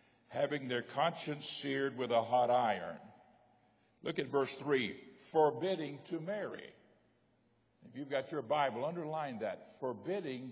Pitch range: 125-175 Hz